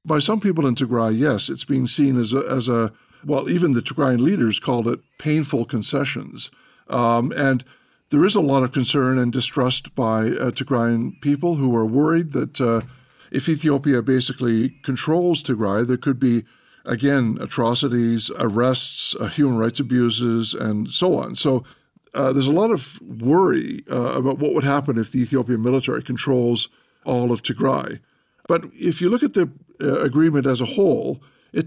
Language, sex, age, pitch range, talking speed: English, male, 50-69, 125-150 Hz, 170 wpm